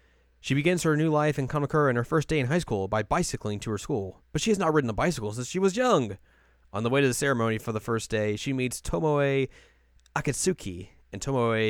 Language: English